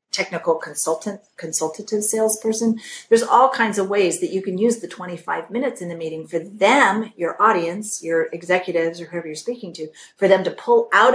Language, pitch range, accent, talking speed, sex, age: English, 170-220 Hz, American, 190 wpm, female, 40-59